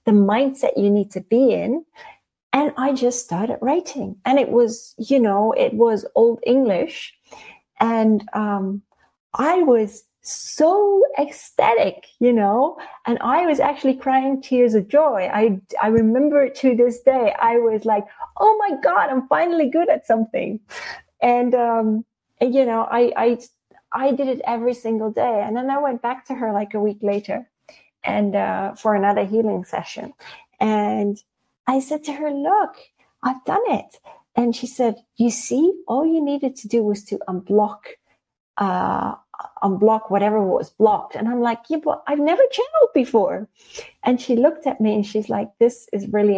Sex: female